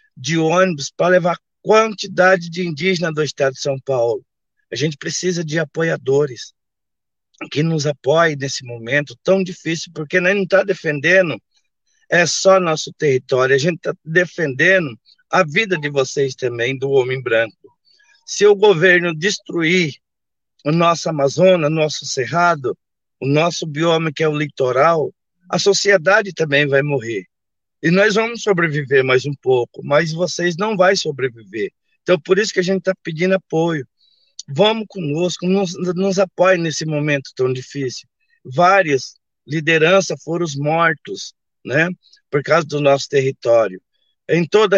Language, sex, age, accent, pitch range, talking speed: Portuguese, male, 50-69, Brazilian, 145-185 Hz, 145 wpm